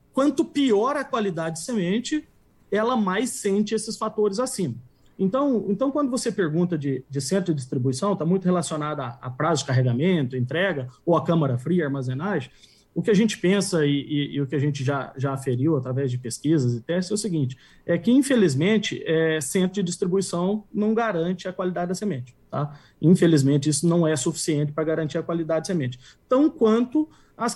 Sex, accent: male, Brazilian